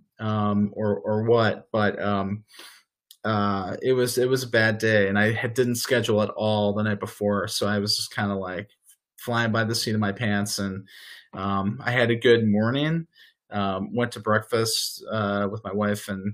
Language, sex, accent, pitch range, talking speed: English, male, American, 105-120 Hz, 200 wpm